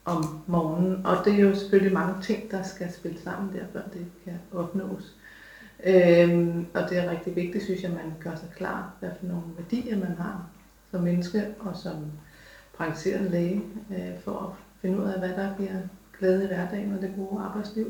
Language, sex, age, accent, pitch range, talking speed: Danish, female, 30-49, native, 175-195 Hz, 195 wpm